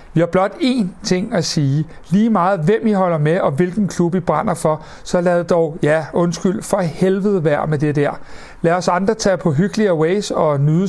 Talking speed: 215 wpm